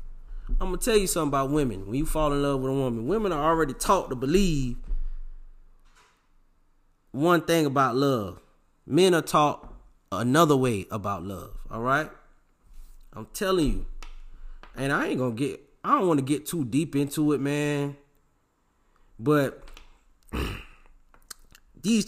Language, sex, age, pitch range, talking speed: English, male, 20-39, 115-155 Hz, 150 wpm